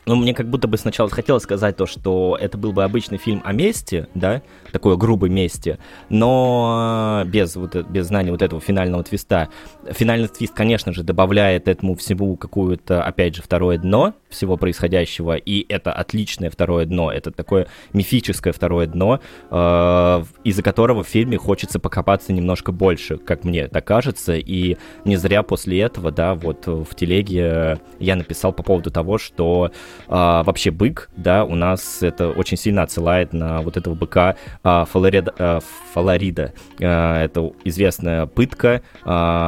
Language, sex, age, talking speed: Russian, male, 20-39, 160 wpm